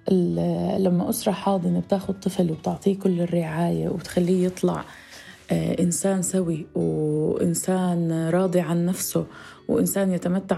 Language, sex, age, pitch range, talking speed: Arabic, female, 20-39, 175-200 Hz, 100 wpm